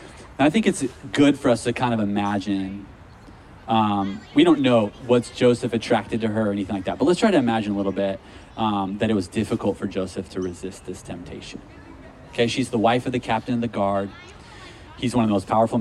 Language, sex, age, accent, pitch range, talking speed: English, male, 30-49, American, 100-125 Hz, 220 wpm